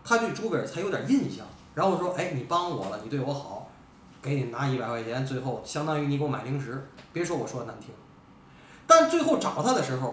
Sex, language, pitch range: male, Chinese, 155-235 Hz